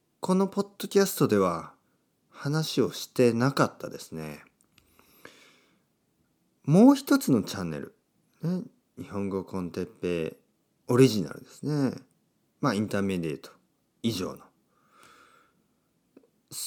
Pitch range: 120-200 Hz